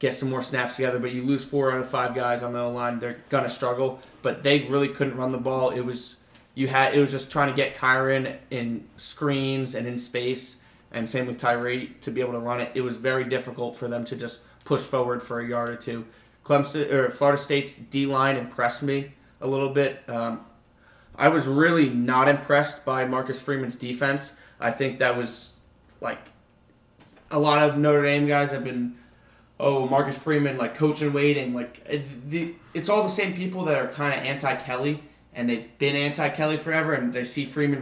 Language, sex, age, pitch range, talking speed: English, male, 20-39, 125-145 Hz, 205 wpm